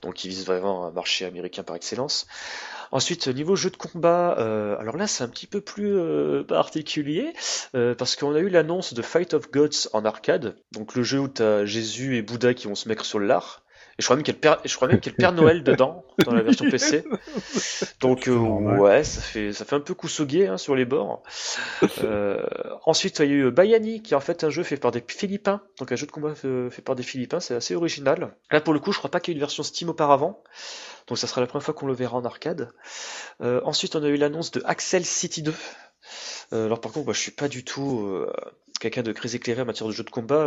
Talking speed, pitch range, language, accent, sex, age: 255 wpm, 110-160 Hz, French, French, male, 30-49